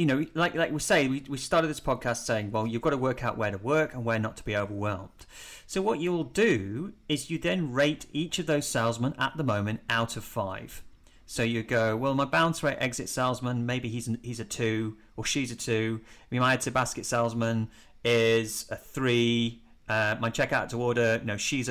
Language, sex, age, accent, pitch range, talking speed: English, male, 30-49, British, 115-145 Hz, 225 wpm